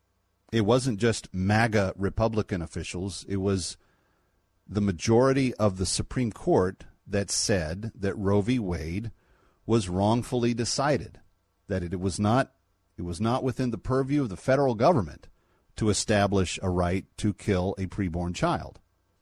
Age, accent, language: 40-59, American, English